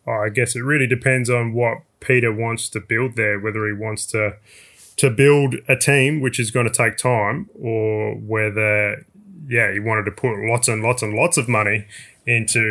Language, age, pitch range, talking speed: English, 20-39, 105-120 Hz, 195 wpm